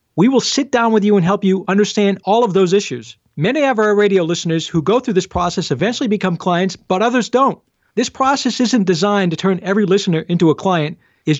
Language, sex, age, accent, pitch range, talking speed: English, male, 40-59, American, 175-235 Hz, 220 wpm